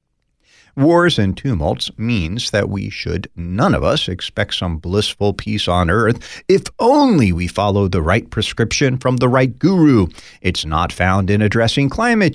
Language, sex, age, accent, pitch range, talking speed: English, male, 40-59, American, 100-155 Hz, 160 wpm